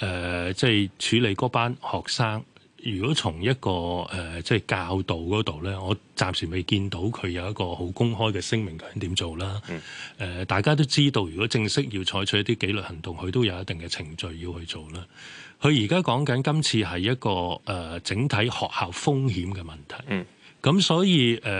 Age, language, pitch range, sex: 20-39, Chinese, 95-125 Hz, male